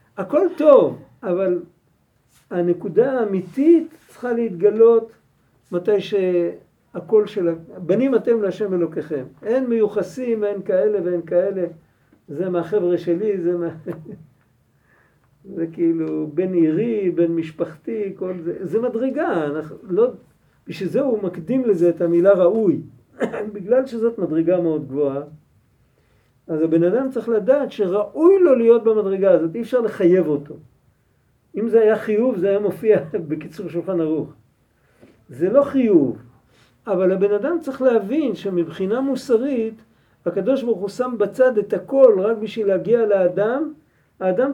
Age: 50-69